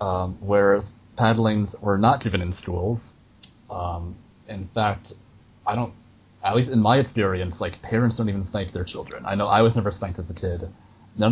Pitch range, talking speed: 100-115 Hz, 185 wpm